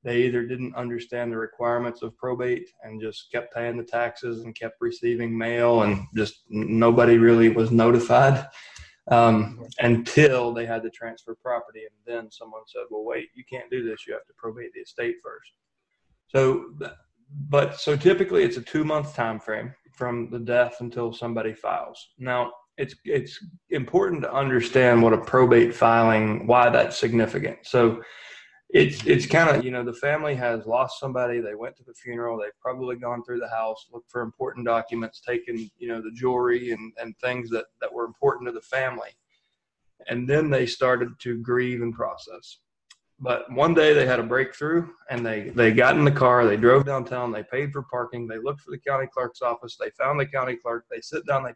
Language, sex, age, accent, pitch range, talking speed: English, male, 20-39, American, 115-135 Hz, 190 wpm